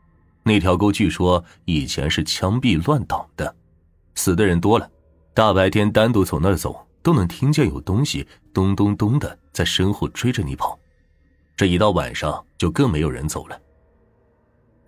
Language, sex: Chinese, male